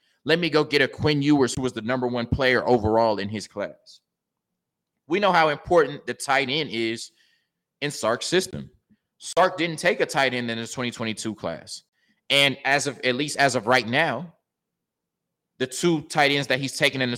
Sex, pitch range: male, 115-145 Hz